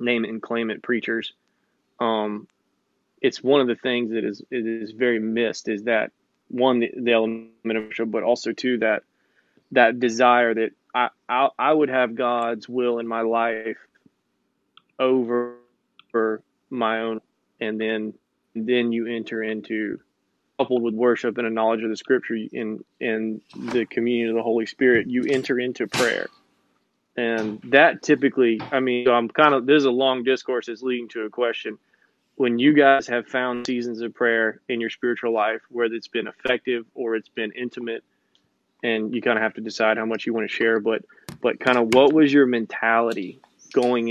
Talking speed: 180 wpm